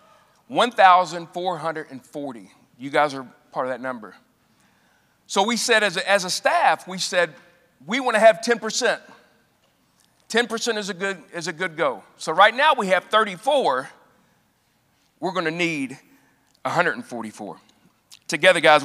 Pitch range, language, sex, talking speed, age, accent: 145-205 Hz, English, male, 130 wpm, 40-59, American